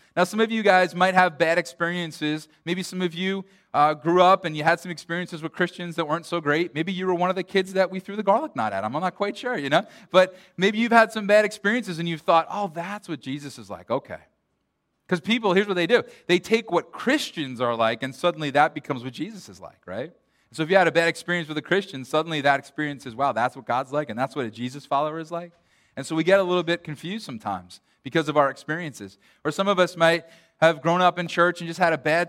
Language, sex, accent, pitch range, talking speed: English, male, American, 155-190 Hz, 260 wpm